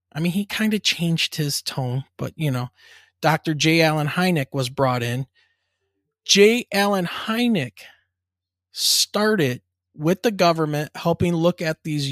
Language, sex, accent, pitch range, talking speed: English, male, American, 125-165 Hz, 145 wpm